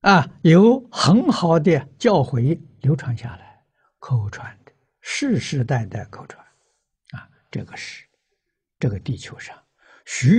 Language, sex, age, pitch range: Chinese, male, 60-79, 115-140 Hz